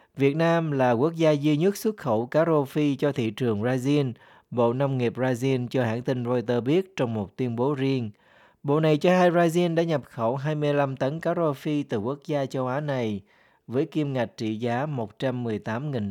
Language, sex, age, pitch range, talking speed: Vietnamese, male, 20-39, 115-145 Hz, 205 wpm